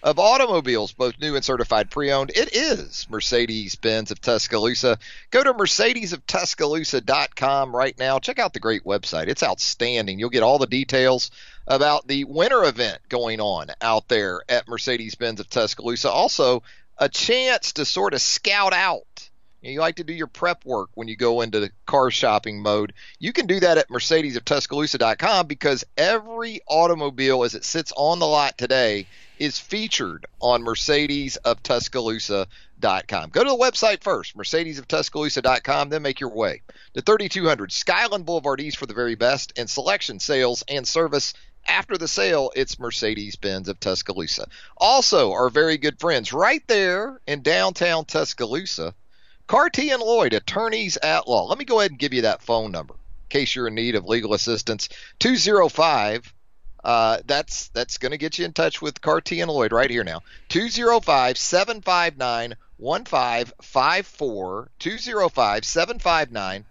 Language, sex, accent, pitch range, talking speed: English, male, American, 115-165 Hz, 155 wpm